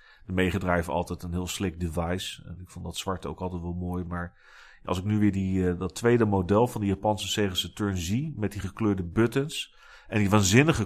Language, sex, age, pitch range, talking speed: Dutch, male, 40-59, 90-110 Hz, 205 wpm